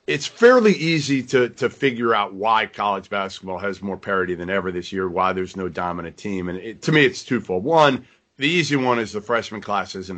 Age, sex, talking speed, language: 40-59, male, 220 wpm, English